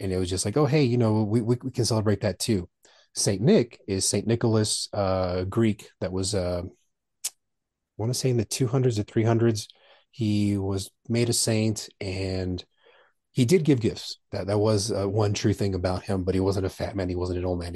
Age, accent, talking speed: 30-49, American, 225 wpm